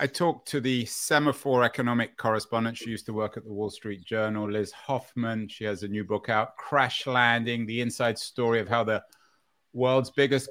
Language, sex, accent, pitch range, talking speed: English, male, British, 100-125 Hz, 195 wpm